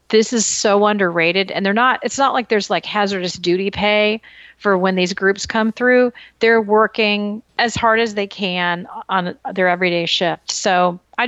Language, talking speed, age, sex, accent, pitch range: English, 180 wpm, 40-59, female, American, 180-220 Hz